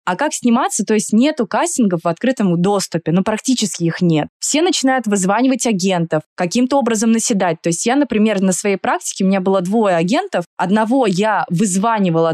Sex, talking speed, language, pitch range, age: female, 175 wpm, Russian, 180-230 Hz, 20-39